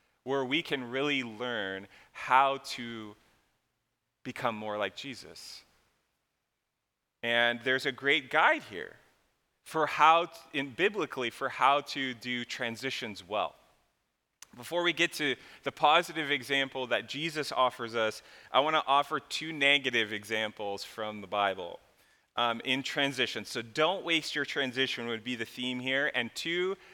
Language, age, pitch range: English, 30-49, 115-150 Hz